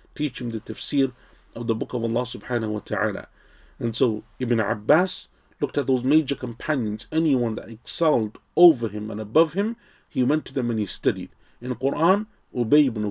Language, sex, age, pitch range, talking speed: English, male, 40-59, 115-155 Hz, 185 wpm